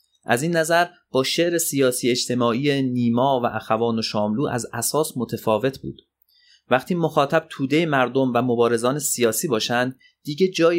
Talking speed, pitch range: 145 wpm, 110-145 Hz